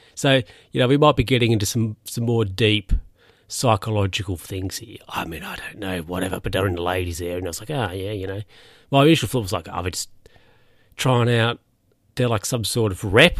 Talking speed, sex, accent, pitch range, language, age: 230 wpm, male, Australian, 100-135 Hz, English, 30-49